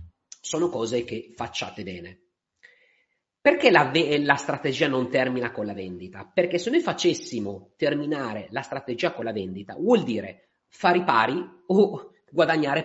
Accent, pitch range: native, 100-160 Hz